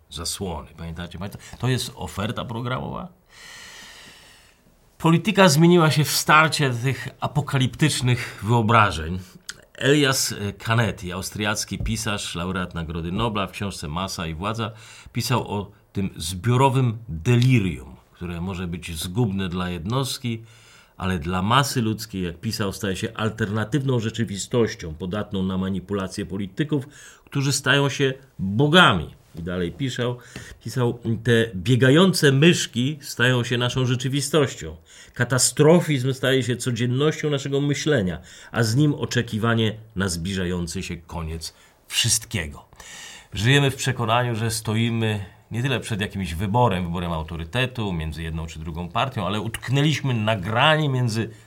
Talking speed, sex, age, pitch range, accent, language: 120 wpm, male, 40-59, 95-130 Hz, native, Polish